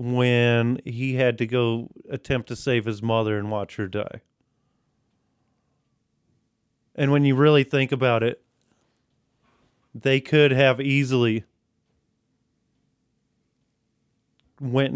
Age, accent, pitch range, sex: 30-49, American, 115-150 Hz, male